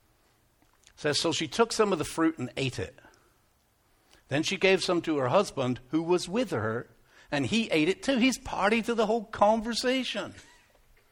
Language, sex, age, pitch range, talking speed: English, male, 60-79, 145-215 Hz, 180 wpm